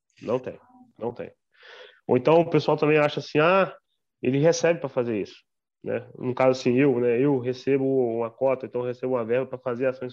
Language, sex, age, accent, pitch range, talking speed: Portuguese, male, 20-39, Brazilian, 125-160 Hz, 205 wpm